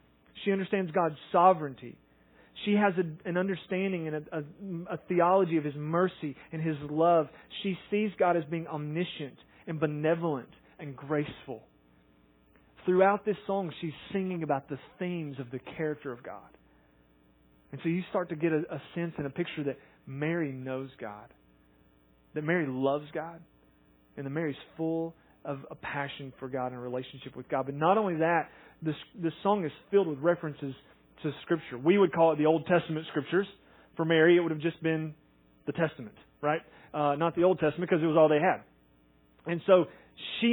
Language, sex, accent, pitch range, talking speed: English, male, American, 135-180 Hz, 180 wpm